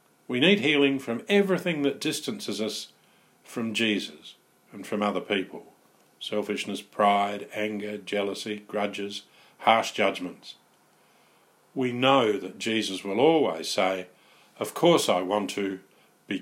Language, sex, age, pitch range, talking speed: English, male, 50-69, 100-135 Hz, 125 wpm